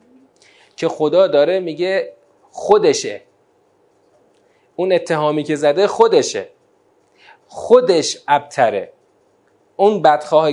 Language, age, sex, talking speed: Persian, 30-49, male, 80 wpm